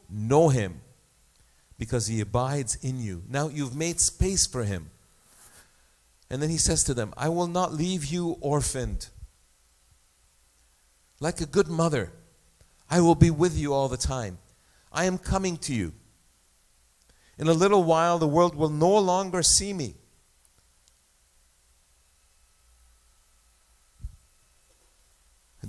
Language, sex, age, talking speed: English, male, 50-69, 125 wpm